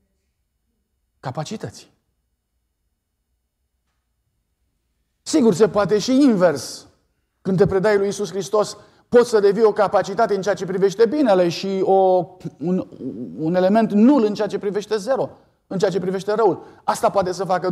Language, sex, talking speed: Romanian, male, 140 wpm